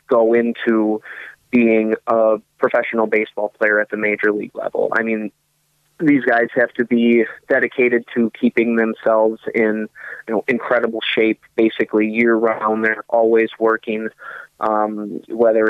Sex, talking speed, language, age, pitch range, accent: male, 135 wpm, English, 20-39, 110-115 Hz, American